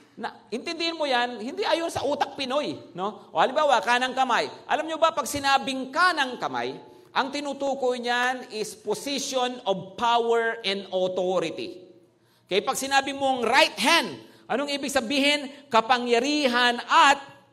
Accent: Filipino